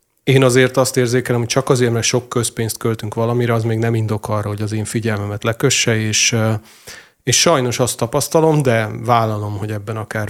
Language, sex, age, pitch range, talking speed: Hungarian, male, 40-59, 110-125 Hz, 185 wpm